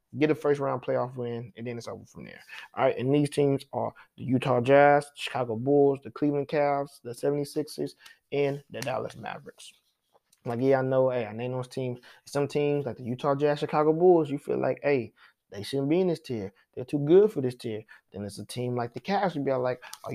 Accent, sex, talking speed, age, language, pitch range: American, male, 225 wpm, 20-39, English, 130-175 Hz